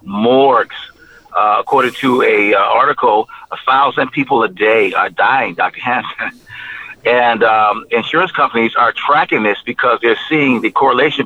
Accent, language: American, English